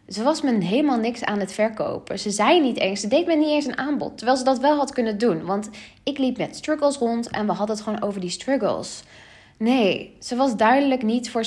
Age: 20-39